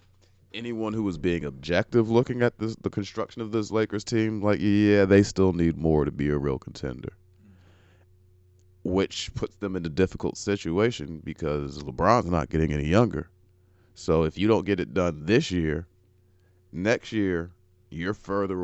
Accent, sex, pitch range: American, male, 85-95 Hz